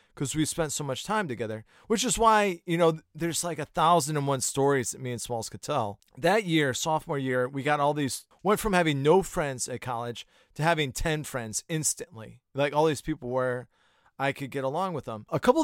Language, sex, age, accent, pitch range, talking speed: English, male, 30-49, American, 125-155 Hz, 225 wpm